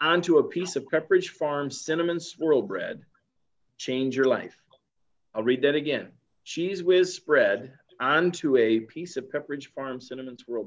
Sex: male